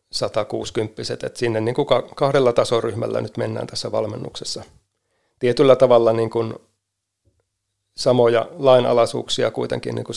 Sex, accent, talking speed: male, native, 125 wpm